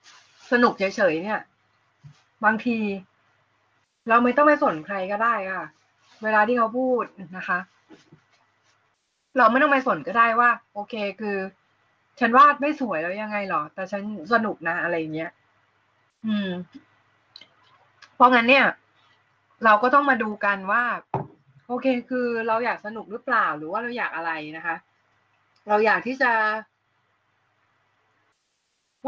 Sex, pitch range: female, 180-240 Hz